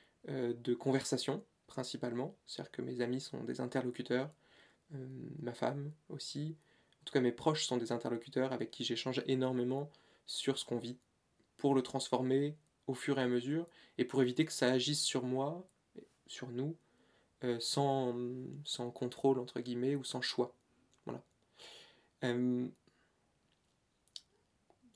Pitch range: 125-140 Hz